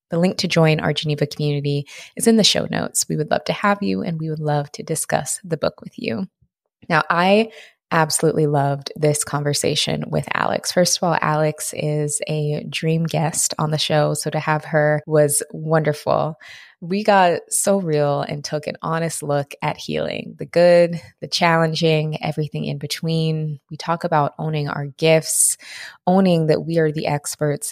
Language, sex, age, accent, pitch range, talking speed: English, female, 20-39, American, 150-170 Hz, 180 wpm